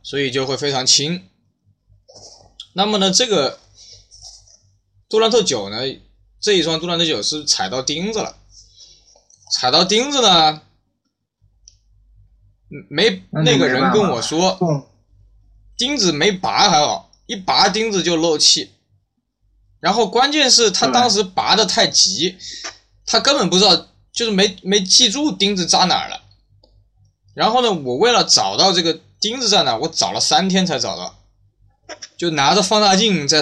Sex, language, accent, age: male, Chinese, native, 20-39